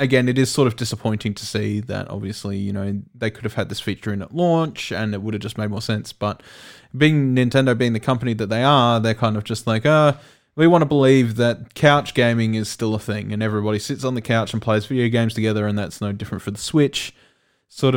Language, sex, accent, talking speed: English, male, Australian, 245 wpm